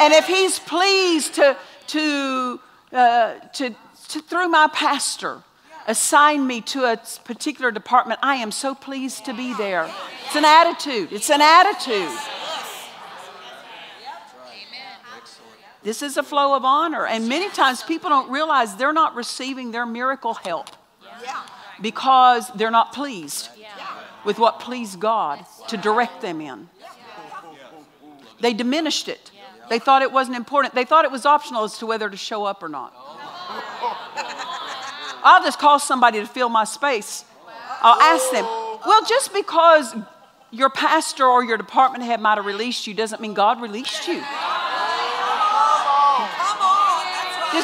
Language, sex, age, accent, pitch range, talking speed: English, female, 50-69, American, 230-315 Hz, 140 wpm